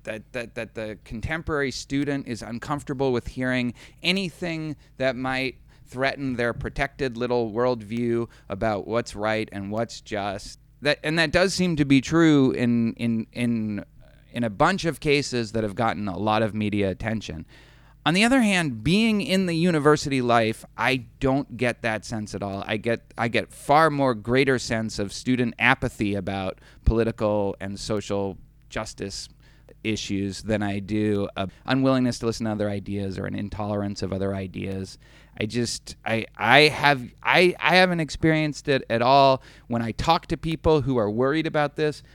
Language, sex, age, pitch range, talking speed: English, male, 30-49, 110-145 Hz, 170 wpm